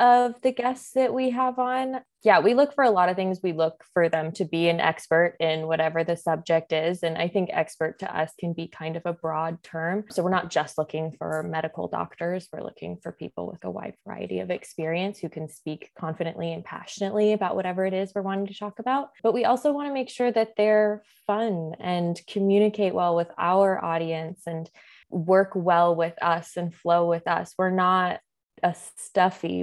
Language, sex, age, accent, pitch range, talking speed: English, female, 20-39, American, 165-200 Hz, 210 wpm